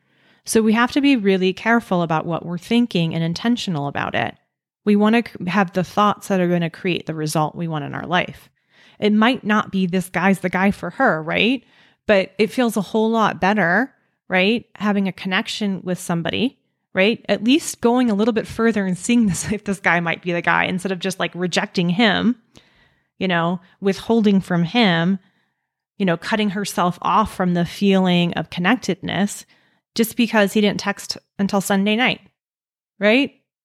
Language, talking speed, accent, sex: English, 185 wpm, American, female